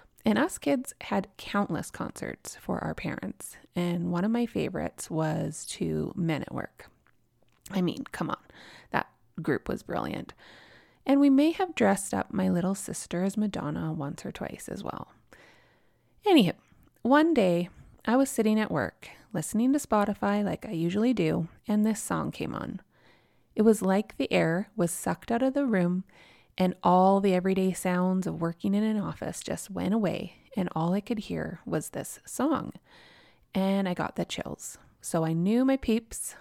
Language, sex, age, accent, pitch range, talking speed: English, female, 20-39, American, 175-220 Hz, 175 wpm